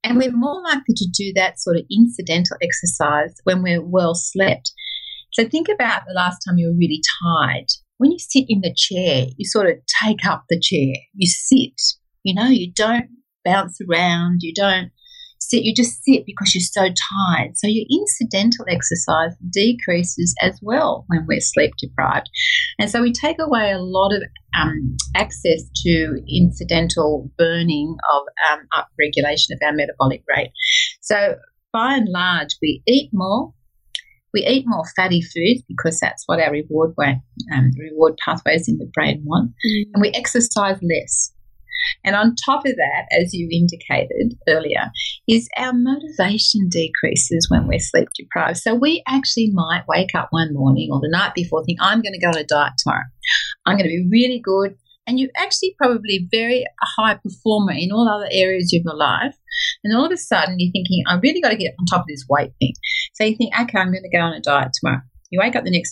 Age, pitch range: 40-59, 170-240 Hz